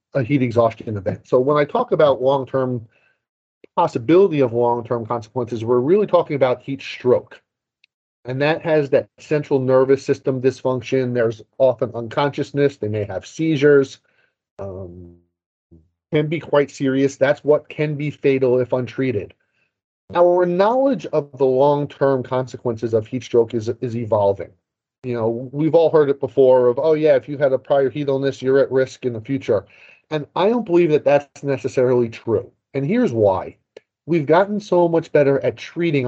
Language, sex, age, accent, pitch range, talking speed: English, male, 30-49, American, 125-150 Hz, 165 wpm